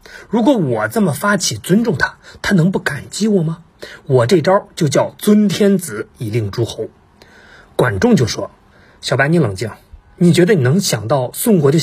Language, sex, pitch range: Chinese, male, 135-185 Hz